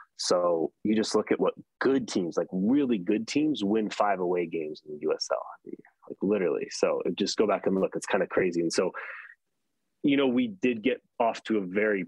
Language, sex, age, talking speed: English, male, 30-49, 210 wpm